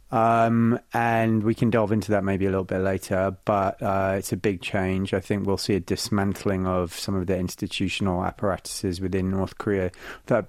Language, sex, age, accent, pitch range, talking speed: English, male, 20-39, British, 95-110 Hz, 200 wpm